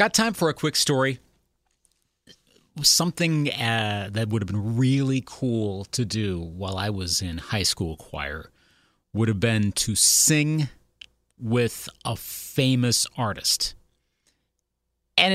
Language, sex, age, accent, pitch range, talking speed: English, male, 40-59, American, 100-140 Hz, 130 wpm